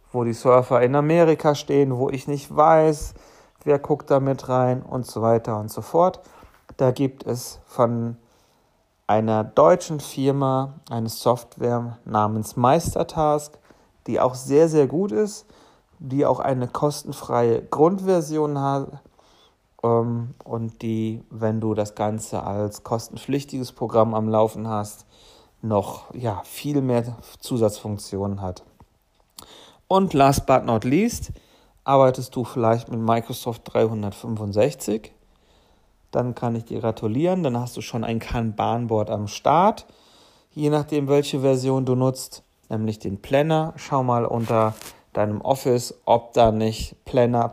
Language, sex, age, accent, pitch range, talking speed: German, male, 40-59, German, 110-140 Hz, 130 wpm